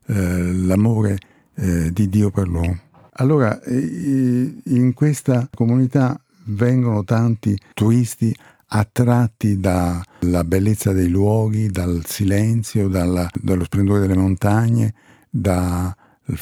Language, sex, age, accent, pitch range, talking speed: Italian, male, 50-69, native, 100-120 Hz, 90 wpm